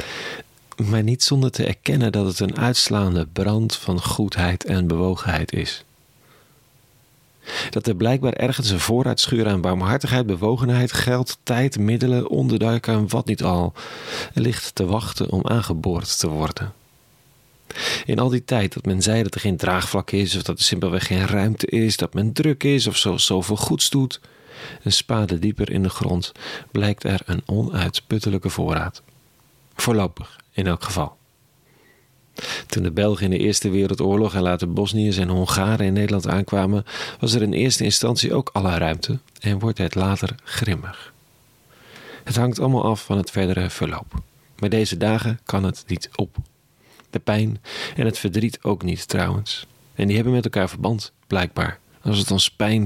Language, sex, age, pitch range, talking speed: Dutch, male, 40-59, 95-120 Hz, 165 wpm